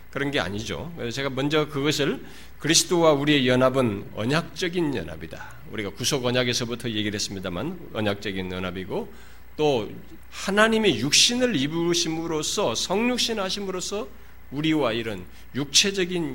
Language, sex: Korean, male